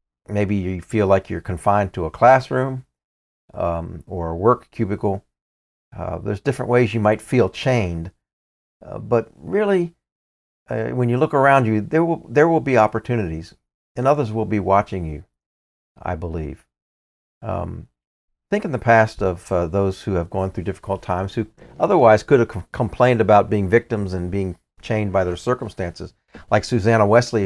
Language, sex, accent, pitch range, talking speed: English, male, American, 85-115 Hz, 170 wpm